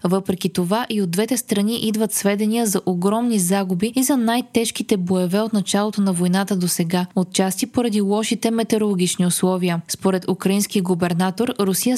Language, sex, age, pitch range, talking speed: Bulgarian, female, 20-39, 185-230 Hz, 150 wpm